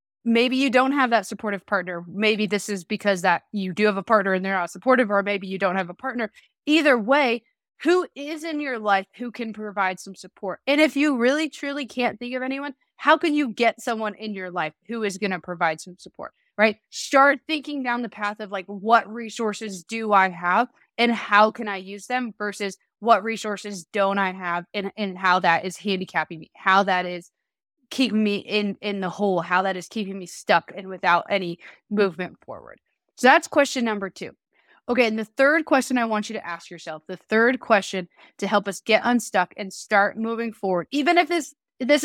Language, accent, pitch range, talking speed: English, American, 195-245 Hz, 210 wpm